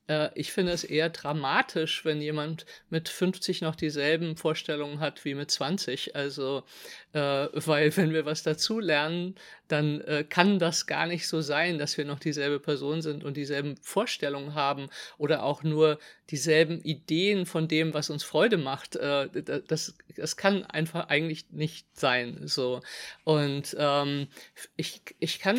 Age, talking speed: 50-69, 155 wpm